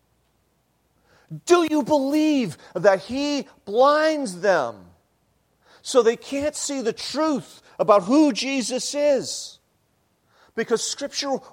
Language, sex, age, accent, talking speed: English, male, 40-59, American, 100 wpm